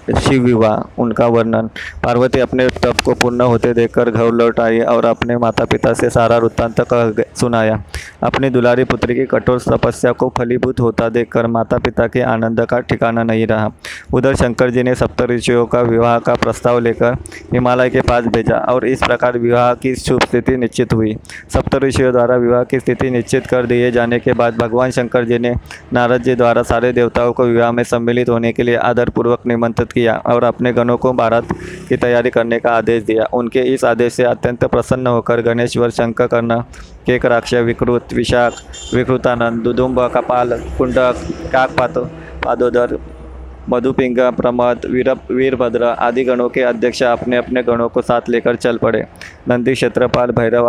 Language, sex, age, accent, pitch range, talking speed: Hindi, male, 20-39, native, 115-125 Hz, 170 wpm